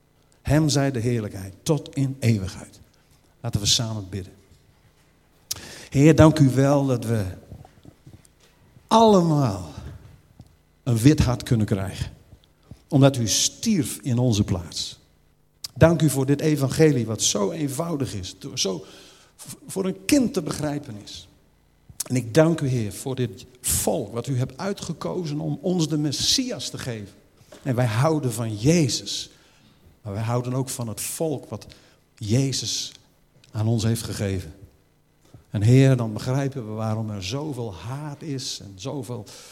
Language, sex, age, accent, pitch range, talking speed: Dutch, male, 50-69, Dutch, 110-145 Hz, 140 wpm